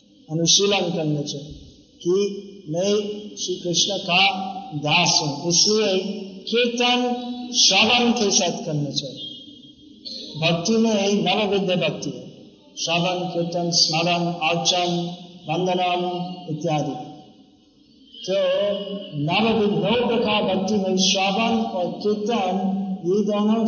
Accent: native